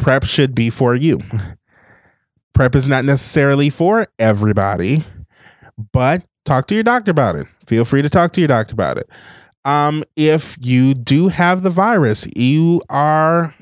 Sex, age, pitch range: male, 30-49, 115-155 Hz